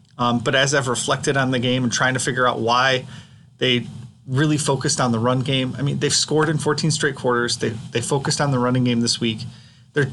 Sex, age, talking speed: male, 30-49, 230 wpm